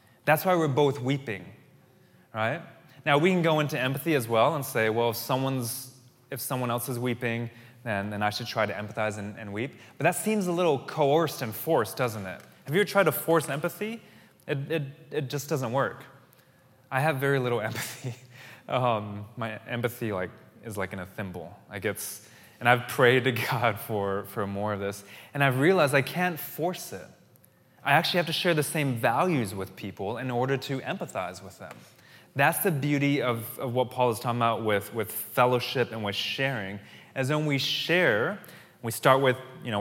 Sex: male